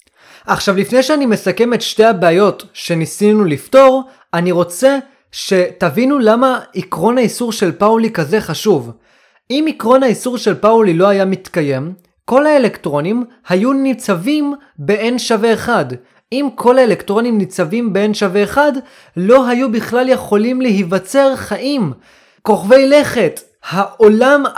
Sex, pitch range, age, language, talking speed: male, 195-265 Hz, 30-49, Hebrew, 120 wpm